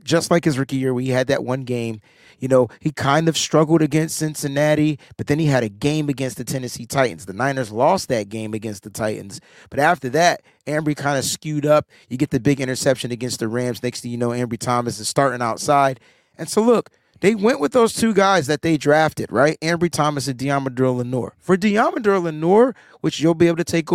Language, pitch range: English, 130-170 Hz